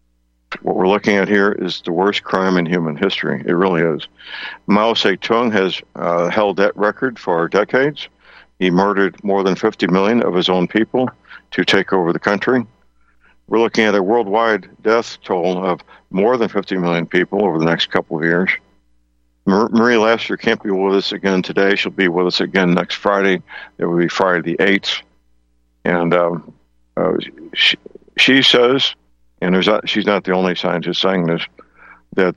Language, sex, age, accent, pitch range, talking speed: English, male, 60-79, American, 85-105 Hz, 180 wpm